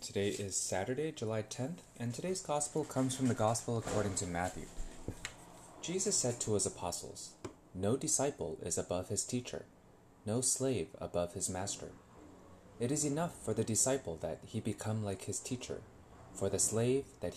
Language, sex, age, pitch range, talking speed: English, male, 20-39, 95-130 Hz, 160 wpm